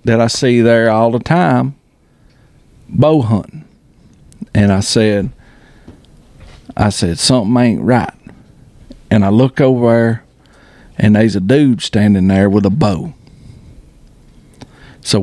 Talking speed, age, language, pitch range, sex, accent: 125 wpm, 50-69, English, 110-140 Hz, male, American